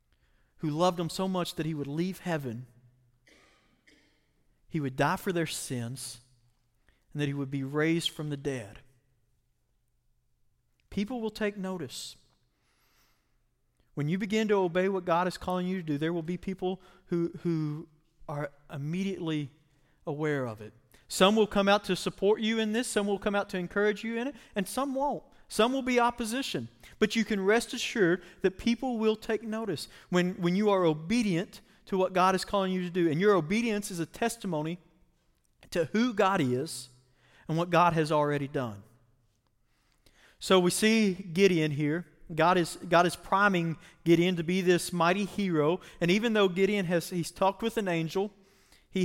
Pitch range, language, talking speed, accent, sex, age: 155-200 Hz, English, 170 wpm, American, male, 40-59